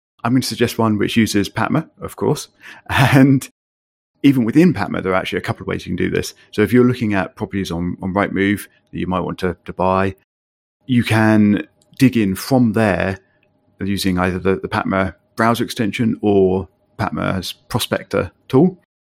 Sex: male